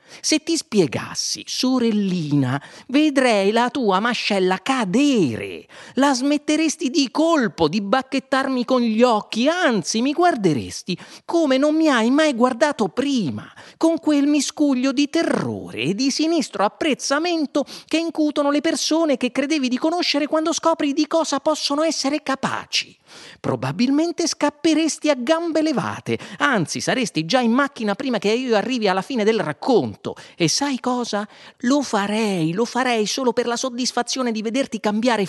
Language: Italian